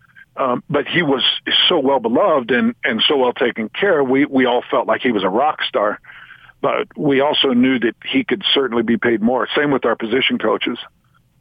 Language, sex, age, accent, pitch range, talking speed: English, male, 50-69, American, 120-165 Hz, 205 wpm